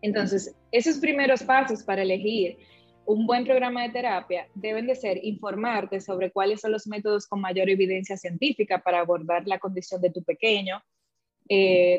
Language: Spanish